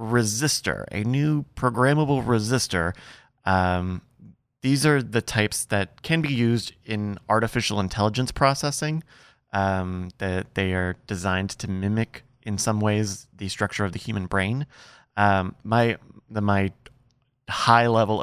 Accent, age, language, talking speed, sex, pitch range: American, 30-49, English, 130 wpm, male, 95-120 Hz